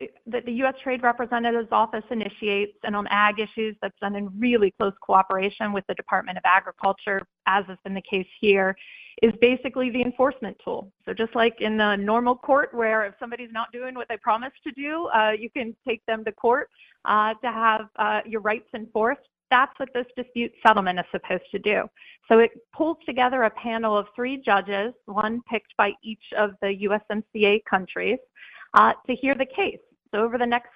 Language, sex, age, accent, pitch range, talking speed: English, female, 40-59, American, 205-245 Hz, 195 wpm